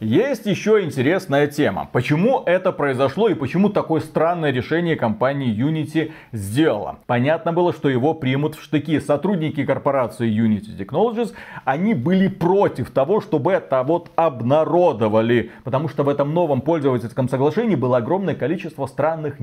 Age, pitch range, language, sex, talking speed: 30-49, 135-185 Hz, Russian, male, 140 wpm